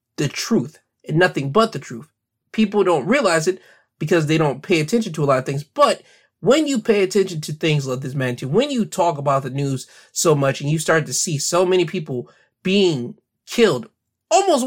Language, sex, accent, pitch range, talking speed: English, male, American, 140-200 Hz, 205 wpm